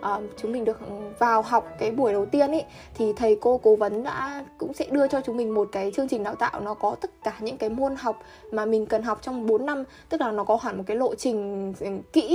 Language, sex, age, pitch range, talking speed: Vietnamese, female, 10-29, 210-275 Hz, 260 wpm